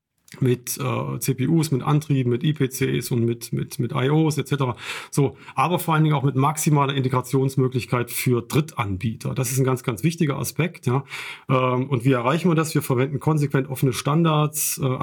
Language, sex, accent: German, male, German